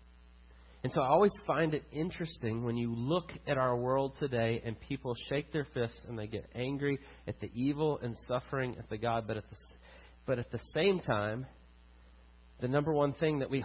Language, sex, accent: English, male, American